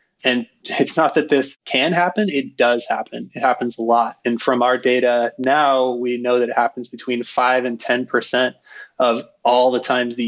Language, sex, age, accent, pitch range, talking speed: English, male, 20-39, American, 120-135 Hz, 195 wpm